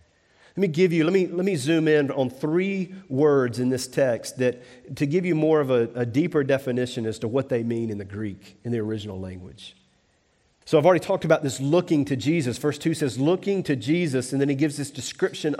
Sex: male